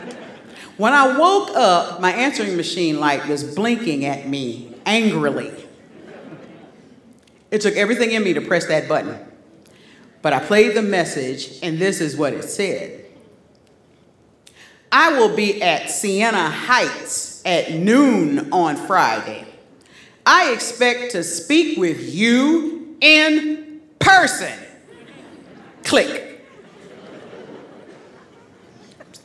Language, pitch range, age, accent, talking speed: English, 160-245 Hz, 40-59, American, 110 wpm